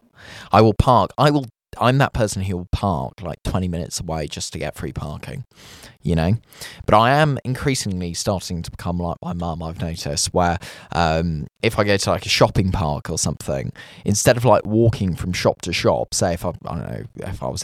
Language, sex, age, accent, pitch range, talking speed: English, male, 10-29, British, 85-115 Hz, 215 wpm